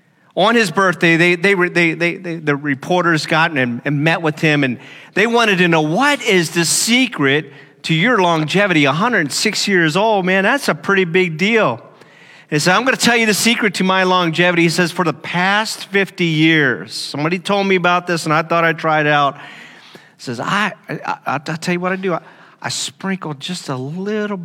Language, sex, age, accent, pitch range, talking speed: English, male, 40-59, American, 145-180 Hz, 215 wpm